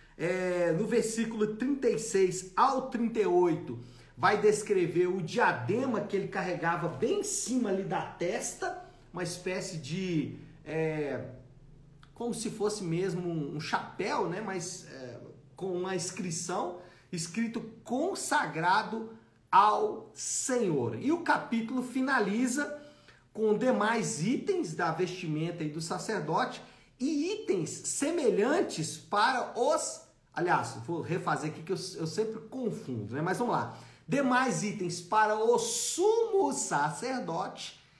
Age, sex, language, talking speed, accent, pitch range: 50-69, male, Portuguese, 115 wpm, Brazilian, 165-230 Hz